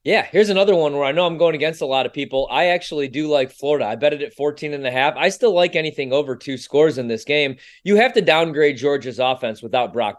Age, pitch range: 20-39, 135-170 Hz